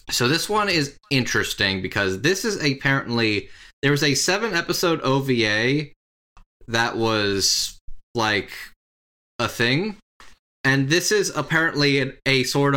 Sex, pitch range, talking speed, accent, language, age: male, 105-140 Hz, 120 wpm, American, English, 20-39